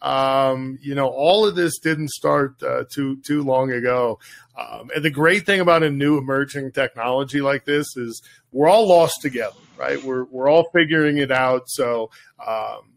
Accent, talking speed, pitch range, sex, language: American, 180 wpm, 130-155 Hz, male, English